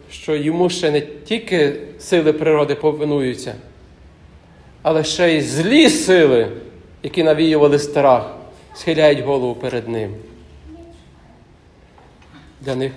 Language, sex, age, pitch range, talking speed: Ukrainian, male, 40-59, 95-155 Hz, 100 wpm